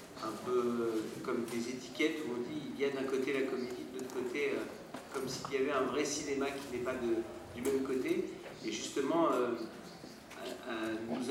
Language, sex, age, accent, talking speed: German, male, 40-59, French, 210 wpm